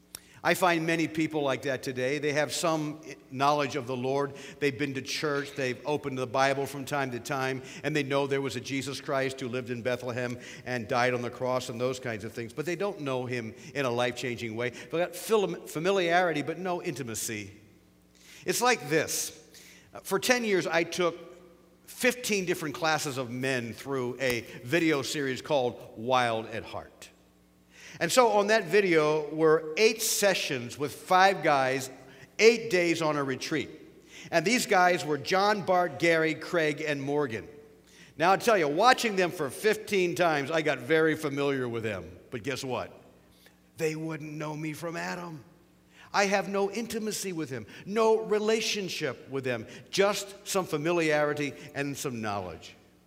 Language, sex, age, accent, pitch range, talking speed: English, male, 50-69, American, 130-180 Hz, 170 wpm